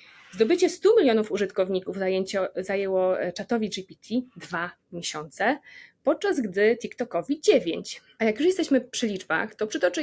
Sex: female